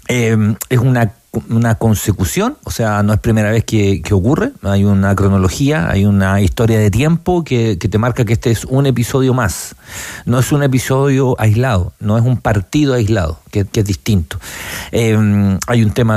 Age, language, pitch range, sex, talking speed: 50-69, Spanish, 105-135 Hz, male, 185 wpm